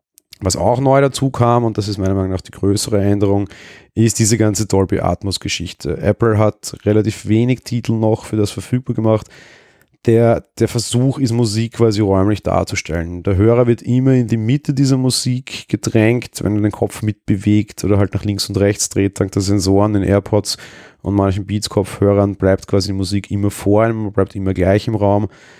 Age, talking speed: 30-49, 185 wpm